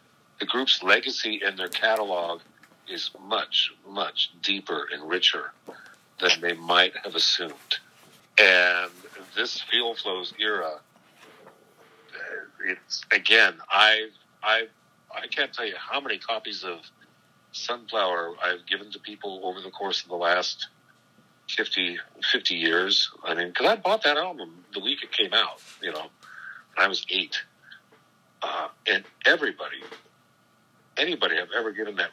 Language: English